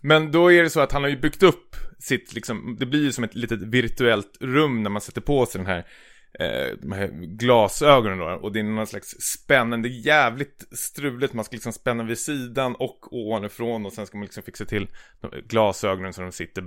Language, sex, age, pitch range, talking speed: Swedish, male, 20-39, 100-130 Hz, 220 wpm